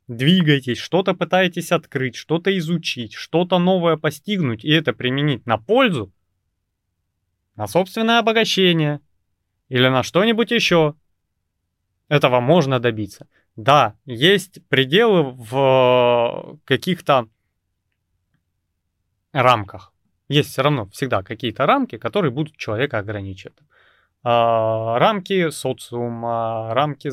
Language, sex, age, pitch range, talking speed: Russian, male, 20-39, 105-155 Hz, 95 wpm